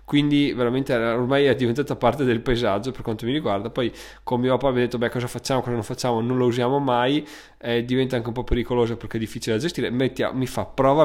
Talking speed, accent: 240 wpm, native